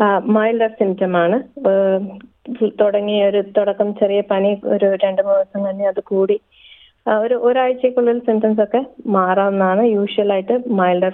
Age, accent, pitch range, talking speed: 20-39, native, 175-215 Hz, 110 wpm